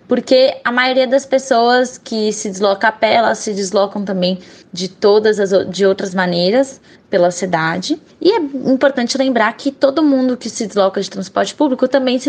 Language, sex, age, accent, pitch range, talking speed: Portuguese, female, 10-29, Brazilian, 205-270 Hz, 180 wpm